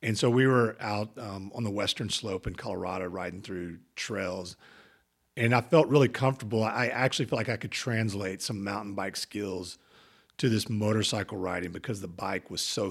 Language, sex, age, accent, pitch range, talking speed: English, male, 40-59, American, 95-120 Hz, 185 wpm